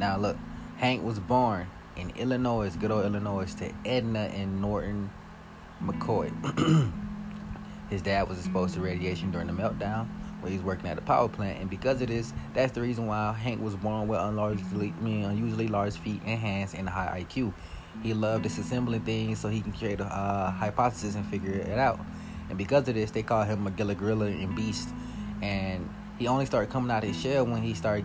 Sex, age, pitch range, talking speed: male, 30-49, 100-115 Hz, 195 wpm